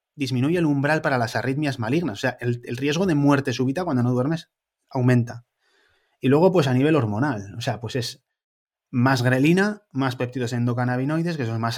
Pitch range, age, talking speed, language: 125-155 Hz, 30-49, 195 wpm, Spanish